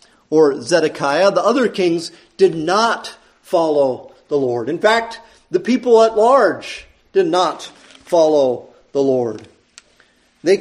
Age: 40-59